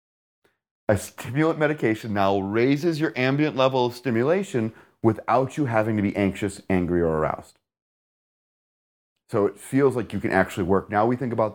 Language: English